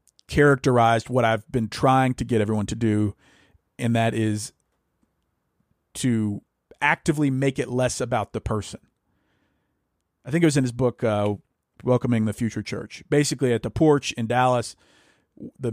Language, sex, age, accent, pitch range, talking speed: English, male, 40-59, American, 115-145 Hz, 155 wpm